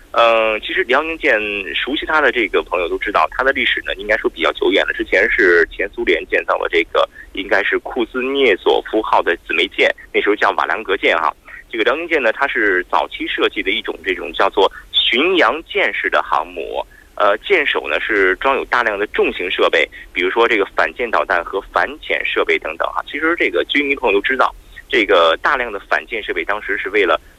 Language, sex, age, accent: Korean, male, 30-49, Chinese